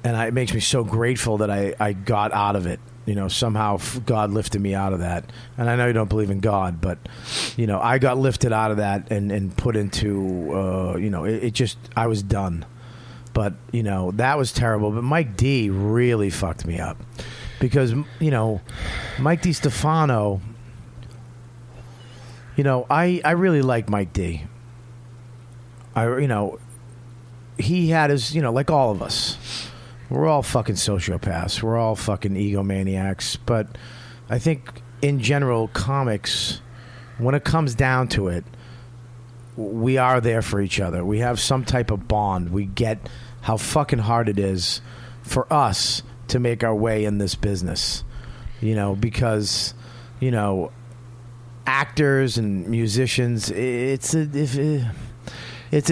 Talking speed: 165 wpm